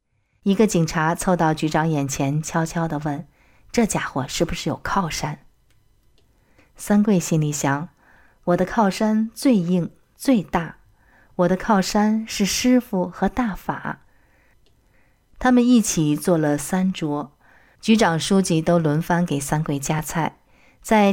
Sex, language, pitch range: female, Chinese, 150-200 Hz